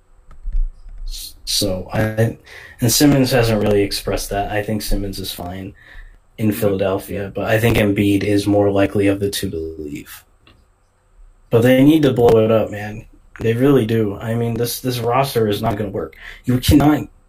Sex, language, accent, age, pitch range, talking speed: male, English, American, 20-39, 100-120 Hz, 170 wpm